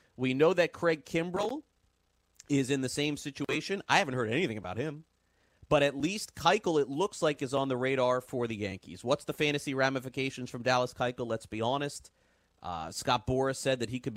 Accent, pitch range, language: American, 115-145 Hz, English